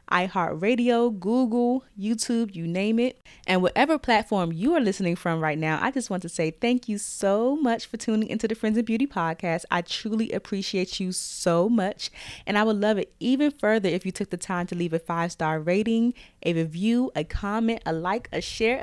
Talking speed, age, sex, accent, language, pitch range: 200 wpm, 20-39, female, American, English, 175-230 Hz